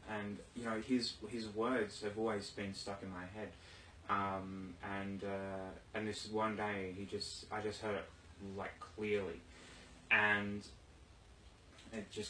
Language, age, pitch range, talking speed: English, 20-39, 95-110 Hz, 150 wpm